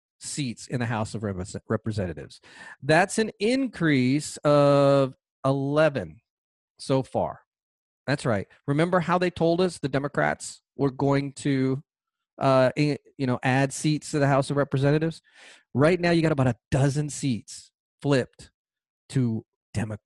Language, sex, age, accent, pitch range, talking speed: English, male, 40-59, American, 120-155 Hz, 140 wpm